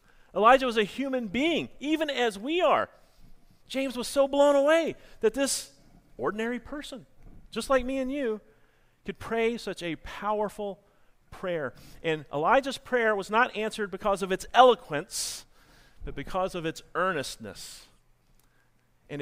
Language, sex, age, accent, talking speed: English, male, 40-59, American, 140 wpm